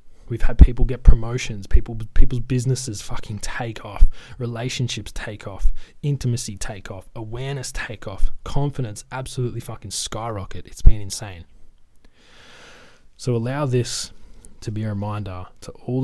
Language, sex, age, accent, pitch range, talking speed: English, male, 20-39, Australian, 95-110 Hz, 135 wpm